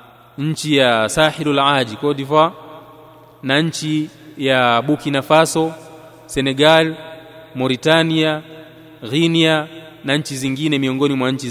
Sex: male